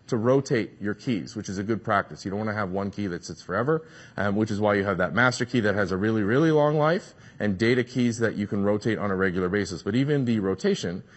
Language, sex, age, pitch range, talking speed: English, male, 30-49, 105-140 Hz, 270 wpm